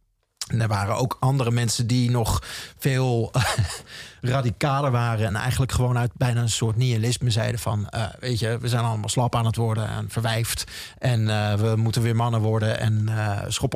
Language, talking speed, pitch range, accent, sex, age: Dutch, 190 wpm, 110-130 Hz, Dutch, male, 40-59